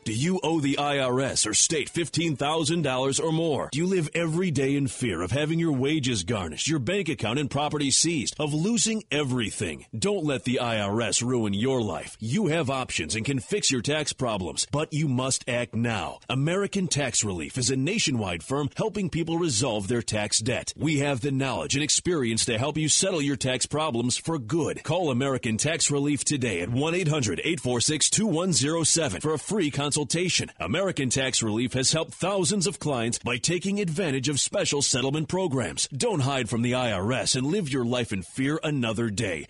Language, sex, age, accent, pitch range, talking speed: English, male, 30-49, American, 125-160 Hz, 180 wpm